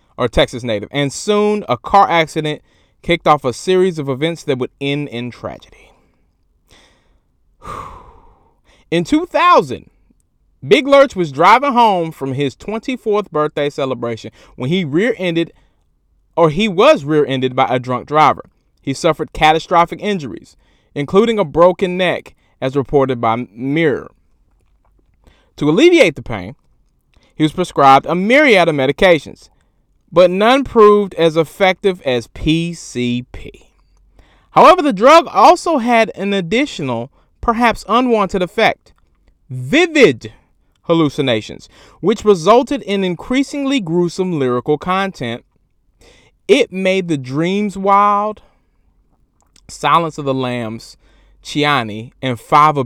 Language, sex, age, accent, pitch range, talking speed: English, male, 30-49, American, 130-200 Hz, 115 wpm